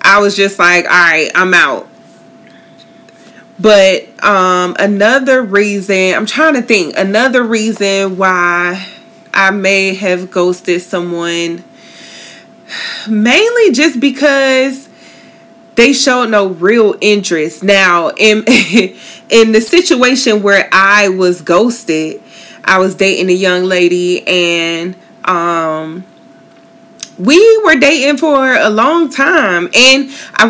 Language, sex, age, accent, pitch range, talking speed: English, female, 20-39, American, 180-225 Hz, 110 wpm